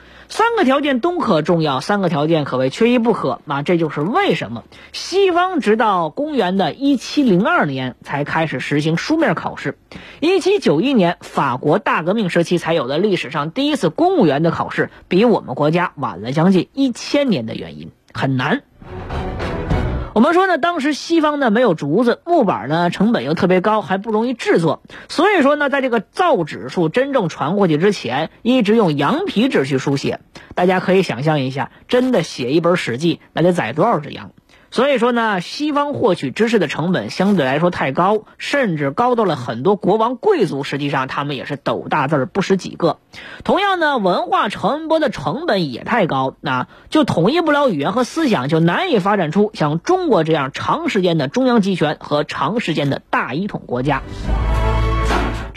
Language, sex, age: Chinese, female, 20-39